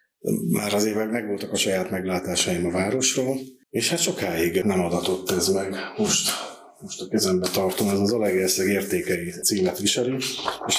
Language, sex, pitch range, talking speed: Hungarian, male, 90-105 Hz, 160 wpm